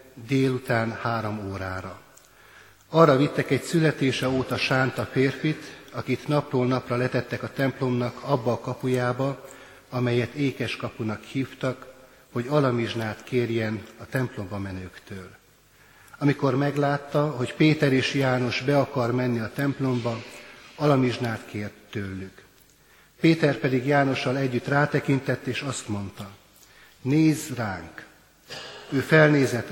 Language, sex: Hungarian, male